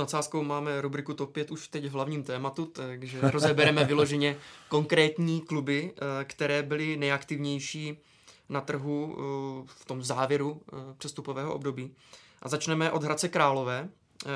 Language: Czech